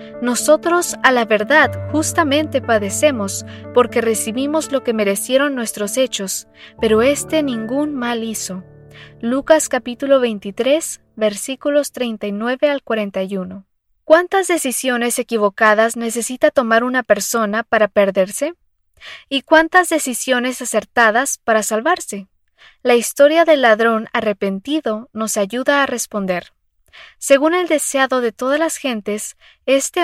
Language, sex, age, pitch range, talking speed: English, female, 20-39, 215-280 Hz, 115 wpm